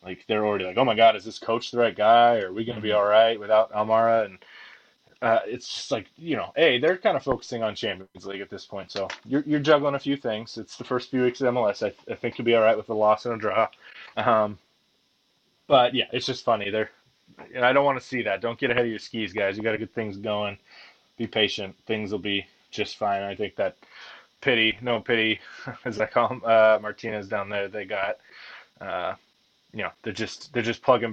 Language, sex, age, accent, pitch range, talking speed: English, male, 20-39, American, 105-120 Hz, 245 wpm